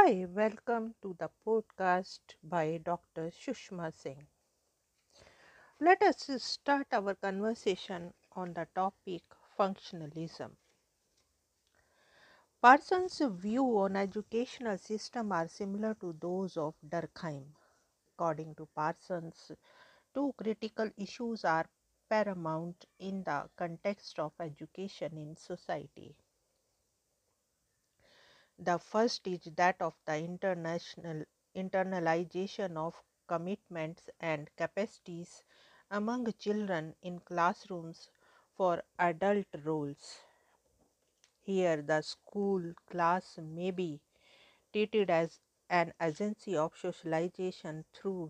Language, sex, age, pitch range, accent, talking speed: English, female, 50-69, 165-210 Hz, Indian, 95 wpm